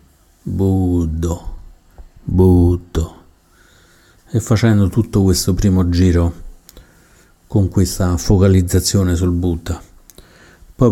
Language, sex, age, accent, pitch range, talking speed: Italian, male, 50-69, native, 85-95 Hz, 75 wpm